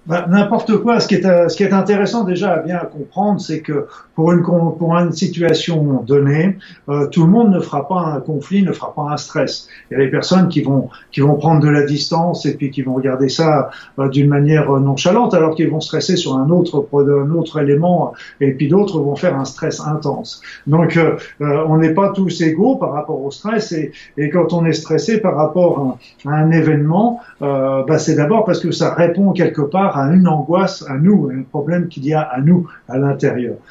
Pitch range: 145-180 Hz